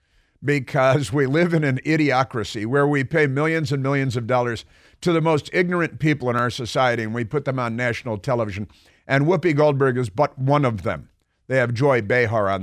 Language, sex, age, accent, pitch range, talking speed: English, male, 50-69, American, 115-150 Hz, 200 wpm